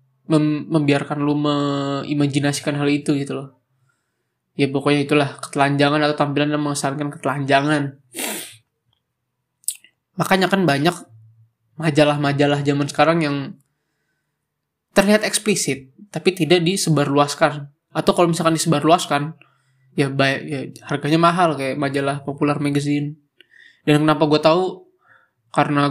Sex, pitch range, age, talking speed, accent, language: male, 140-155 Hz, 20-39, 110 wpm, native, Indonesian